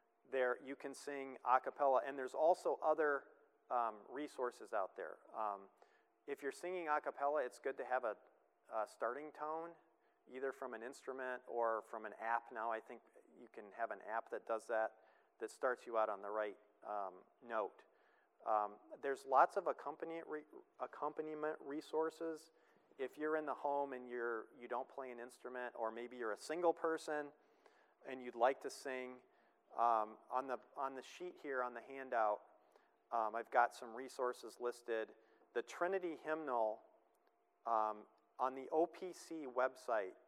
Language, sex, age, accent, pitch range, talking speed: English, male, 40-59, American, 115-140 Hz, 160 wpm